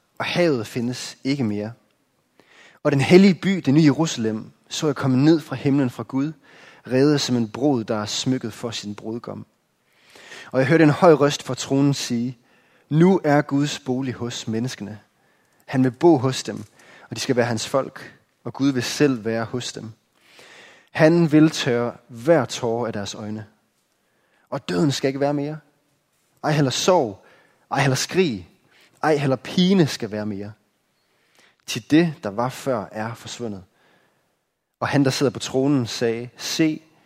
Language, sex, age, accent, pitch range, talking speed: Danish, male, 20-39, native, 110-140 Hz, 165 wpm